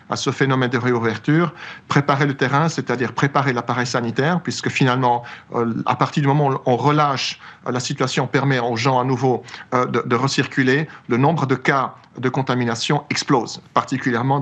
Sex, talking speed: male, 175 wpm